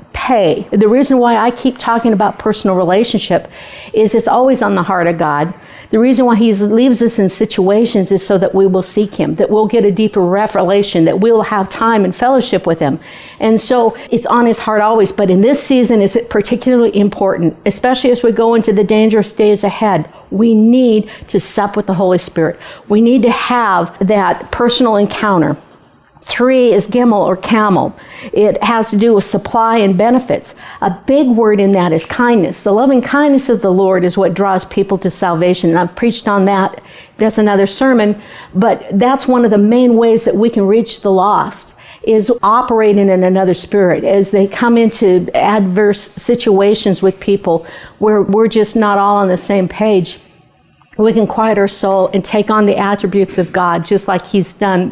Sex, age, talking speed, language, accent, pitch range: female, 50-69, 195 wpm, English, American, 190-230 Hz